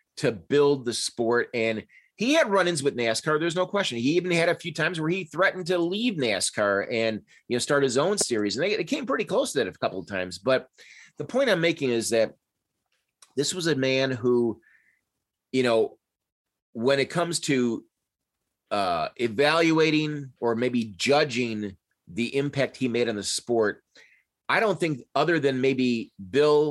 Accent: American